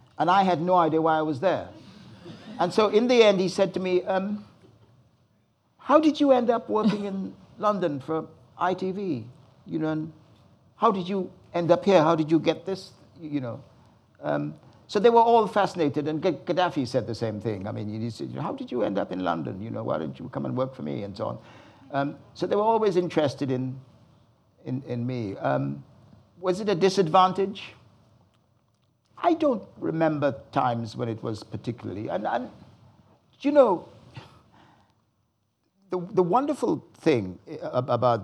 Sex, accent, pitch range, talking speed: male, British, 115-185 Hz, 175 wpm